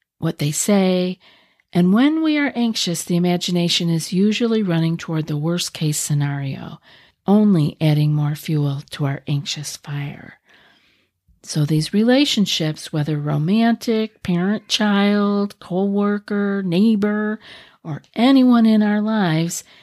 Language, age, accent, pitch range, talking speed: English, 50-69, American, 160-210 Hz, 120 wpm